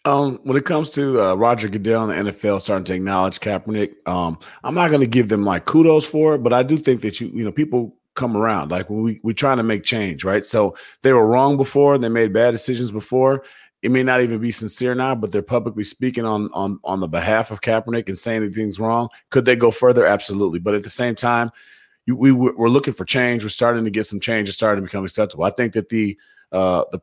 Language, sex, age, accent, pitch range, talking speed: English, male, 30-49, American, 105-125 Hz, 250 wpm